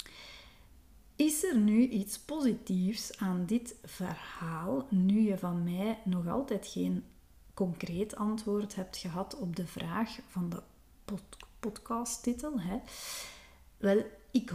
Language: Dutch